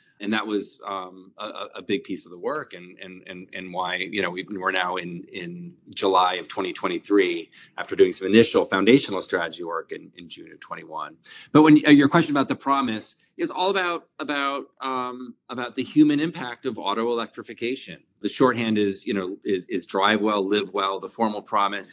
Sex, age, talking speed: male, 30-49, 190 wpm